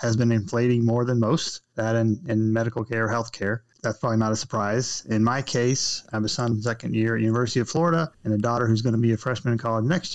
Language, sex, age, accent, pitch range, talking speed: English, male, 30-49, American, 110-120 Hz, 250 wpm